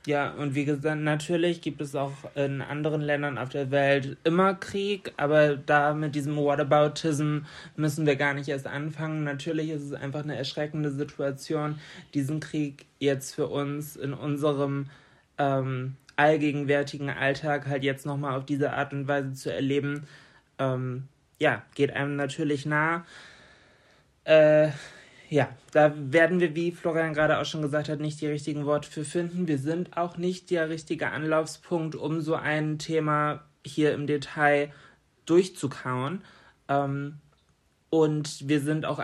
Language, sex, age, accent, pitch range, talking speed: German, male, 20-39, German, 140-155 Hz, 150 wpm